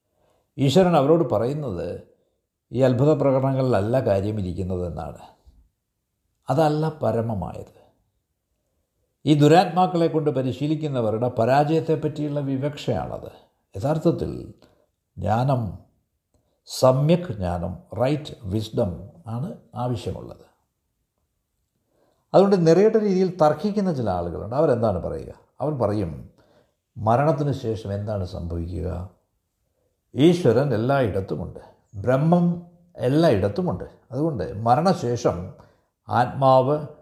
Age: 60-79